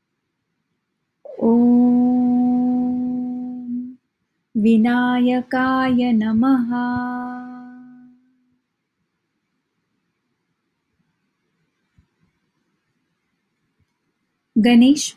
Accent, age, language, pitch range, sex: Indian, 30-49, English, 235-250 Hz, female